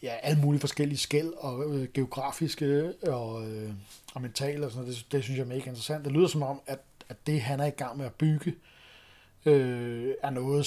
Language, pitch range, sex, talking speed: Danish, 130-145 Hz, male, 225 wpm